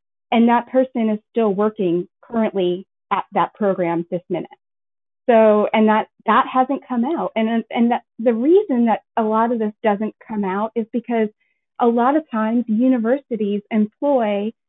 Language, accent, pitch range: English, American, 215-255 Hz